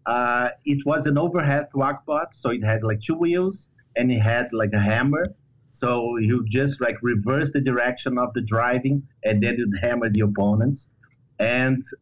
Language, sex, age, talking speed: English, male, 30-49, 175 wpm